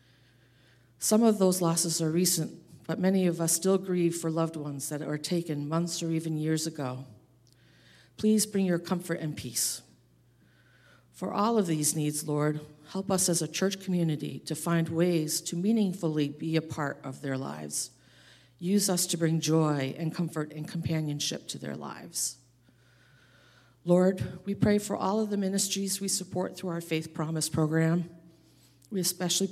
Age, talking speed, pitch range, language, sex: 50-69, 165 wpm, 145-175 Hz, English, female